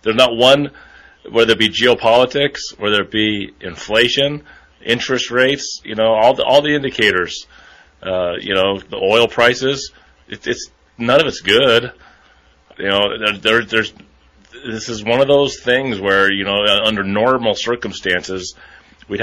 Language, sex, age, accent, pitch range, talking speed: English, male, 30-49, American, 100-125 Hz, 155 wpm